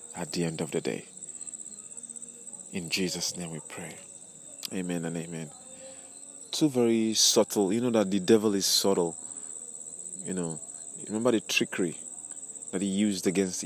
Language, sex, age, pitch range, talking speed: English, male, 30-49, 95-120 Hz, 145 wpm